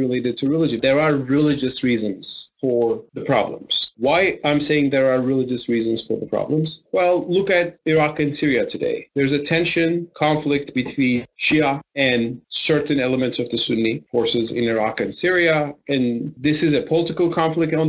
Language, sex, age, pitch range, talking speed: English, male, 30-49, 115-145 Hz, 170 wpm